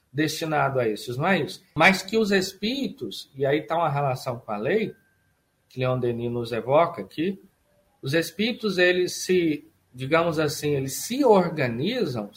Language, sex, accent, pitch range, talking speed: Portuguese, male, Brazilian, 130-170 Hz, 160 wpm